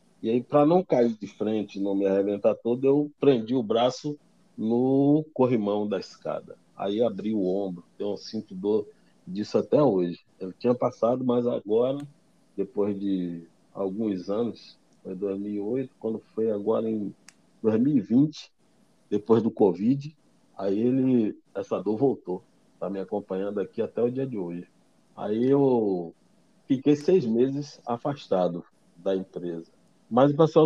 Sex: male